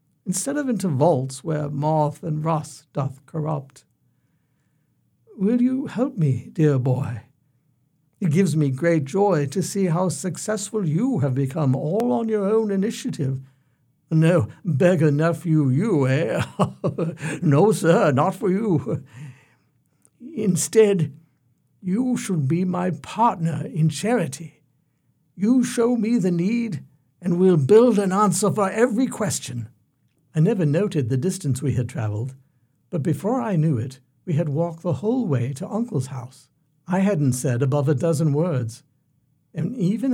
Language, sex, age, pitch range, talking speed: English, male, 60-79, 140-185 Hz, 140 wpm